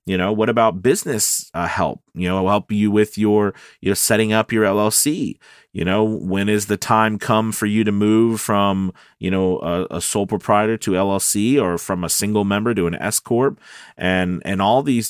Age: 30-49